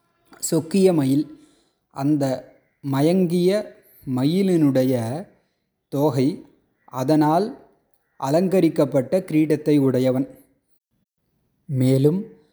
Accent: native